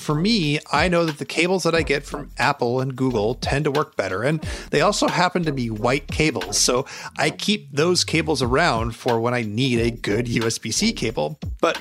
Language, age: English, 30-49